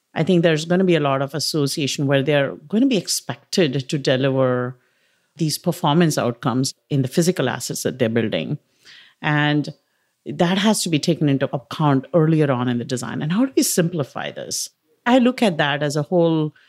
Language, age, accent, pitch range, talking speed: English, 50-69, Indian, 135-175 Hz, 195 wpm